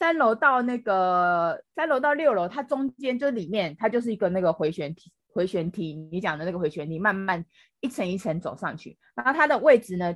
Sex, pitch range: female, 180-260 Hz